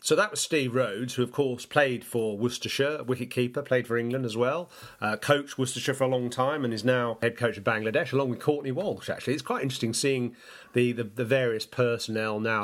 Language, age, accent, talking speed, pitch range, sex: English, 40-59, British, 225 wpm, 115-130 Hz, male